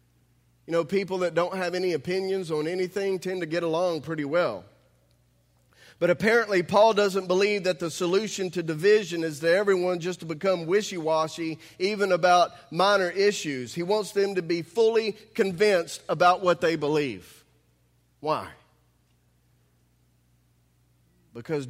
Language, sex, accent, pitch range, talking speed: English, male, American, 115-165 Hz, 140 wpm